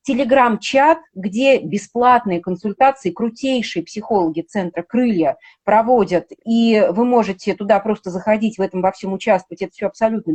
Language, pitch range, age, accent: Russian, 190-245 Hz, 30-49, native